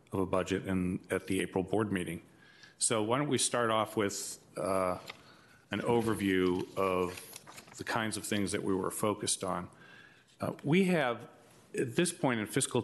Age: 40-59